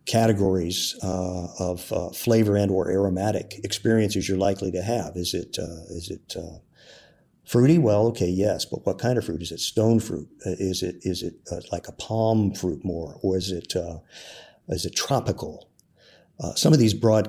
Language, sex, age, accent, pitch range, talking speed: English, male, 50-69, American, 95-115 Hz, 185 wpm